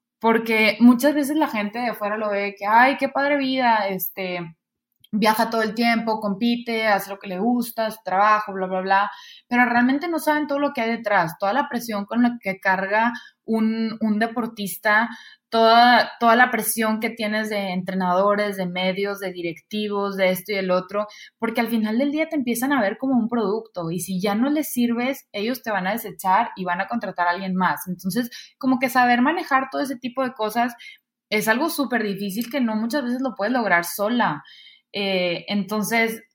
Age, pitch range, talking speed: 20-39, 200-240 Hz, 200 wpm